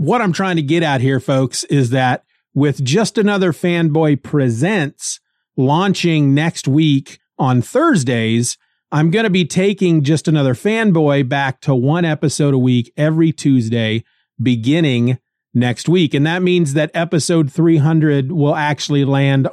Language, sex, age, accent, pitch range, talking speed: English, male, 40-59, American, 130-165 Hz, 150 wpm